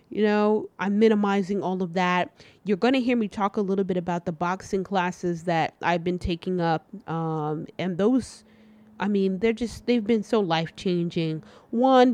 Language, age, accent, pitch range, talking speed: English, 30-49, American, 175-220 Hz, 190 wpm